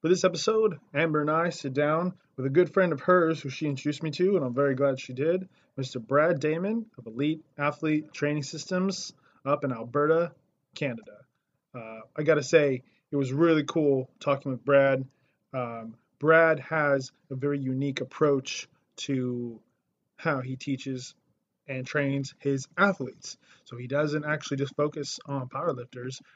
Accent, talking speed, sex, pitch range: American, 165 wpm, male, 130-155 Hz